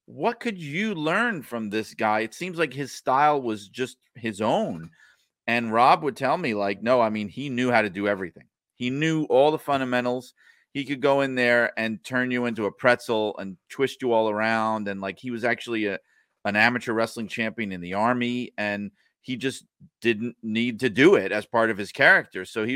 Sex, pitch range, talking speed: male, 105-130 Hz, 210 wpm